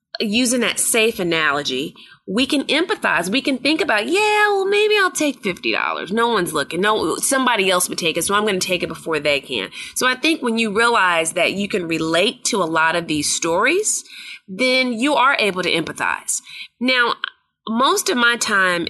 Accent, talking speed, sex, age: American, 195 wpm, female, 20-39